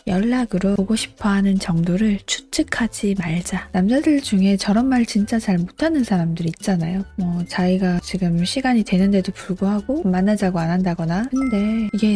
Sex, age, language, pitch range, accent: female, 20-39, Korean, 185-240 Hz, native